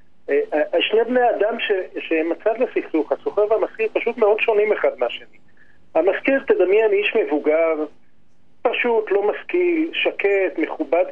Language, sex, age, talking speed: Hebrew, male, 40-59, 120 wpm